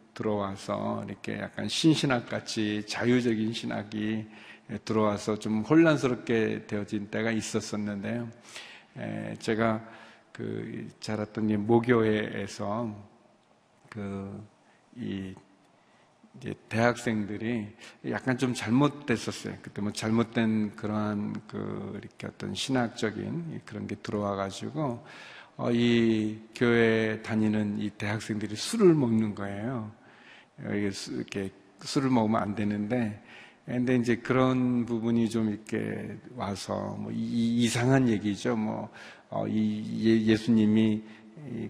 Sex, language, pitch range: male, Korean, 105-120 Hz